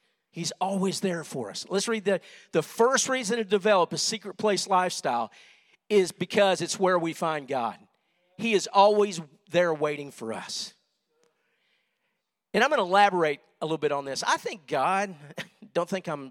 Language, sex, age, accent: English, male, 50-69, American